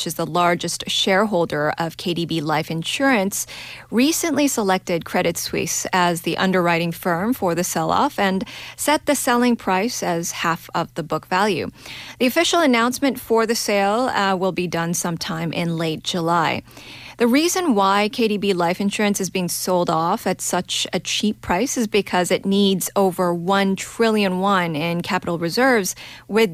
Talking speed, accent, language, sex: 160 wpm, American, English, female